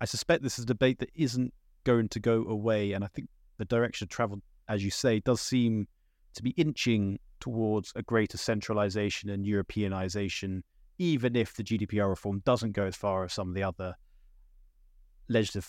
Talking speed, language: 185 wpm, English